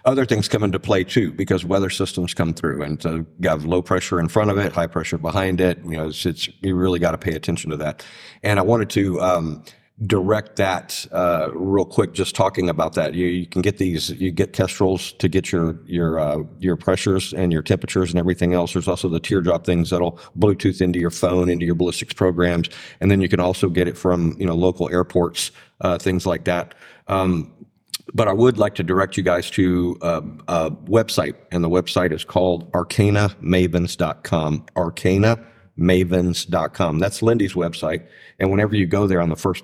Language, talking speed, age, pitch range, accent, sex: English, 200 wpm, 50-69, 85-95 Hz, American, male